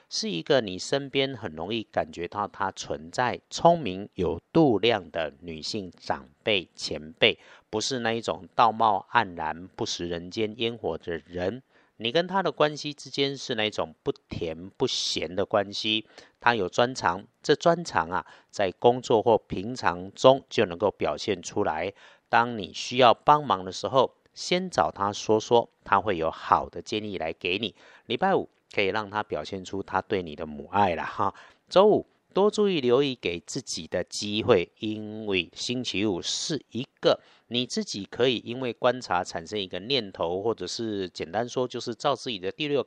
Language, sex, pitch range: Chinese, male, 95-130 Hz